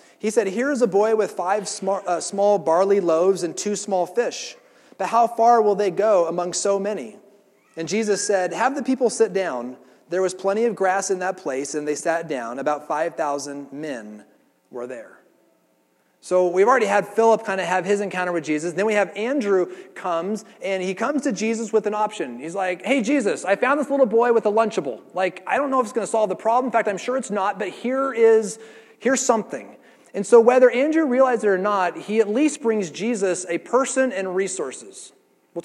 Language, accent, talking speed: English, American, 215 wpm